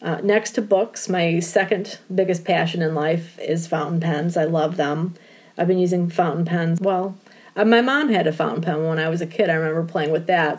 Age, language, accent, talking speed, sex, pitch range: 30-49, English, American, 215 wpm, female, 160-200 Hz